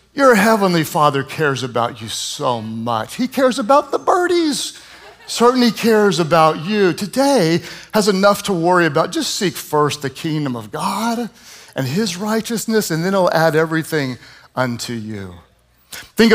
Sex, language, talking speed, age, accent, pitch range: male, English, 150 wpm, 50-69, American, 130-180 Hz